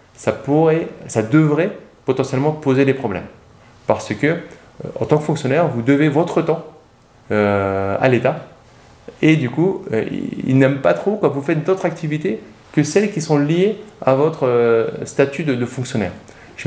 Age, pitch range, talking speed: 20-39, 115-155 Hz, 165 wpm